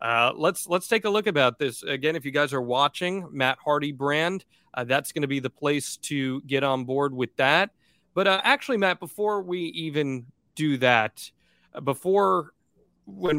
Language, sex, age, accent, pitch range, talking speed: English, male, 30-49, American, 130-165 Hz, 190 wpm